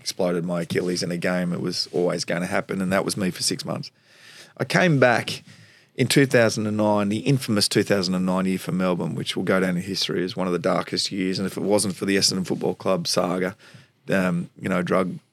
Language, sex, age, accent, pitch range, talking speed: English, male, 30-49, Australian, 95-120 Hz, 220 wpm